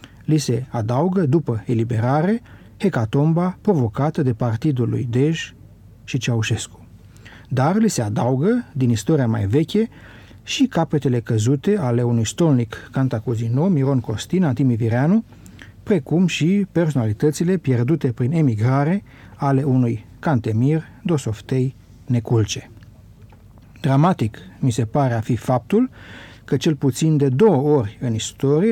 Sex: male